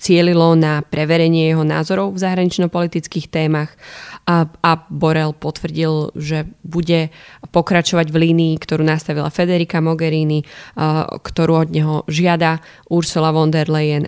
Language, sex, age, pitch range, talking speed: Slovak, female, 20-39, 160-175 Hz, 130 wpm